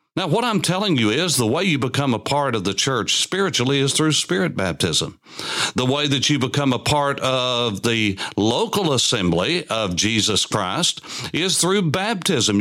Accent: American